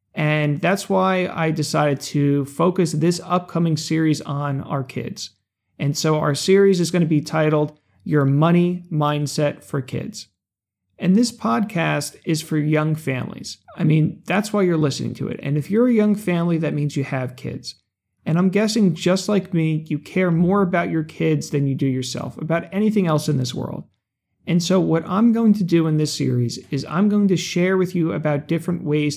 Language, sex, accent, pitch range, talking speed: English, male, American, 145-180 Hz, 195 wpm